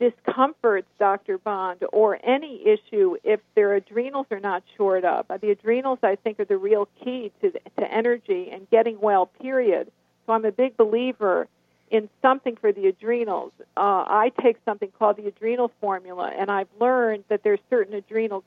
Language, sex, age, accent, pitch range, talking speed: English, female, 50-69, American, 205-245 Hz, 175 wpm